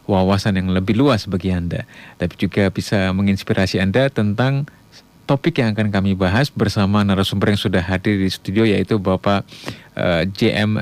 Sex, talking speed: male, 155 wpm